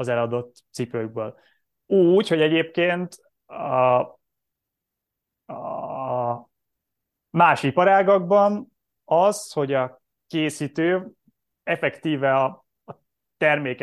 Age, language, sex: 20-39, Hungarian, male